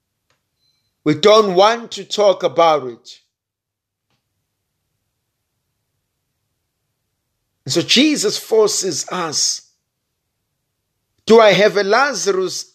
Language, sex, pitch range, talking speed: English, male, 125-200 Hz, 80 wpm